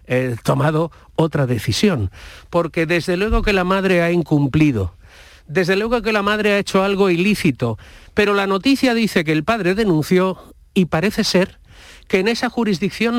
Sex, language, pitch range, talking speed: male, Spanish, 150-210 Hz, 165 wpm